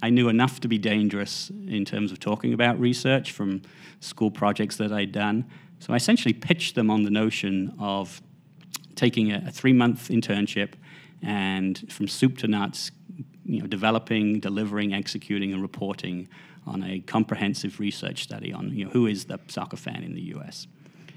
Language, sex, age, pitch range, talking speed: English, male, 40-59, 100-150 Hz, 175 wpm